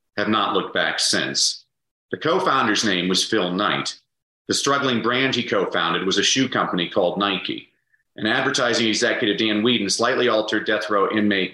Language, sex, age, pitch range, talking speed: English, male, 40-59, 100-120 Hz, 165 wpm